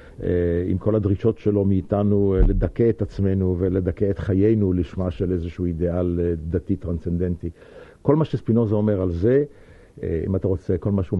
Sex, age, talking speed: male, 60-79, 155 wpm